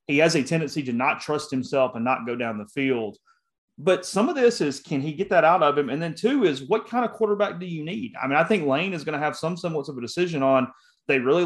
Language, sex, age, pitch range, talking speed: English, male, 30-49, 125-160 Hz, 285 wpm